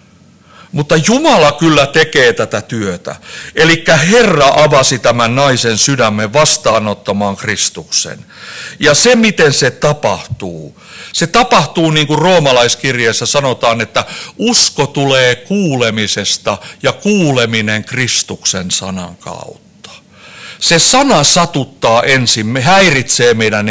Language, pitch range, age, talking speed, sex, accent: Finnish, 115-170 Hz, 60-79, 100 wpm, male, native